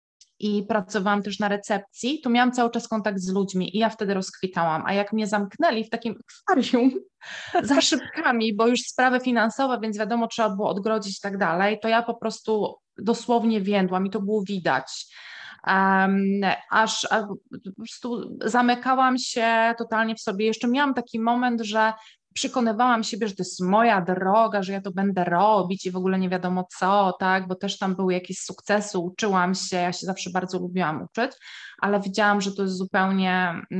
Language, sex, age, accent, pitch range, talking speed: Polish, female, 20-39, native, 190-220 Hz, 180 wpm